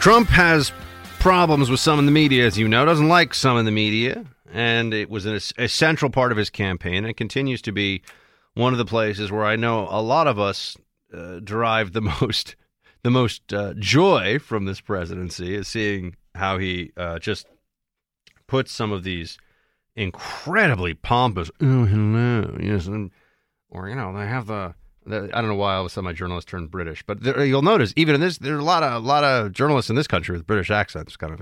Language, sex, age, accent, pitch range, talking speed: English, male, 30-49, American, 95-130 Hz, 215 wpm